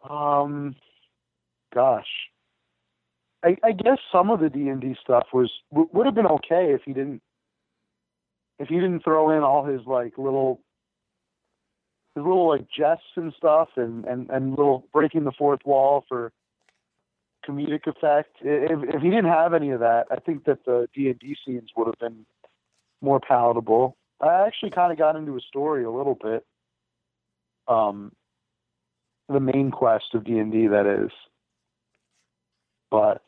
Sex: male